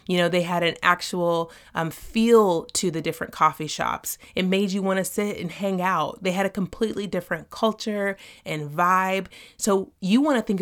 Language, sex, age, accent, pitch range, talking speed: English, female, 30-49, American, 165-215 Hz, 185 wpm